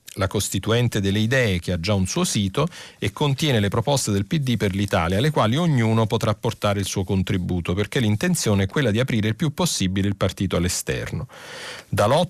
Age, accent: 40-59, native